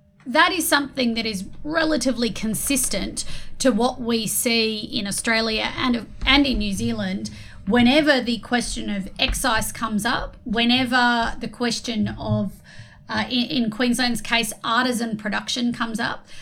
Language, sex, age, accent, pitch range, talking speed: English, female, 30-49, Australian, 205-240 Hz, 140 wpm